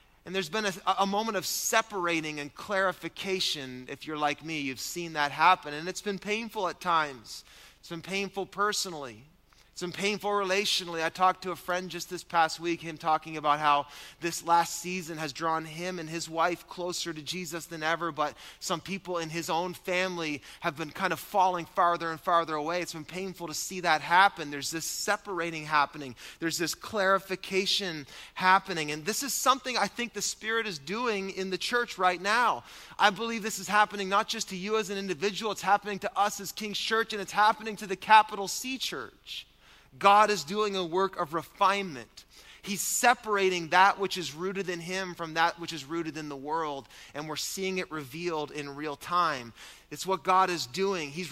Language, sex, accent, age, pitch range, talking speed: English, male, American, 20-39, 165-200 Hz, 200 wpm